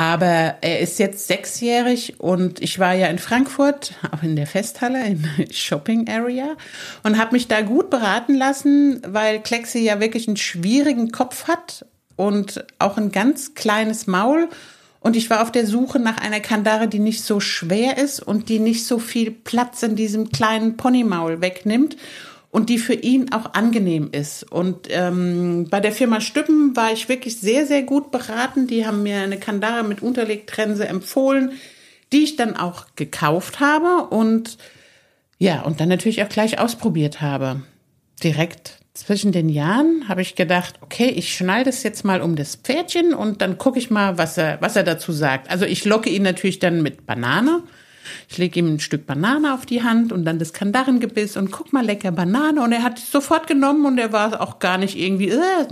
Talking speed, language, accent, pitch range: 190 wpm, German, German, 190-255 Hz